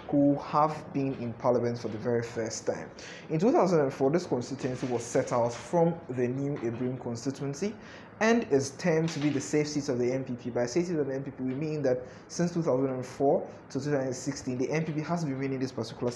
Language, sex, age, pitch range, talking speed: English, male, 20-39, 125-145 Hz, 195 wpm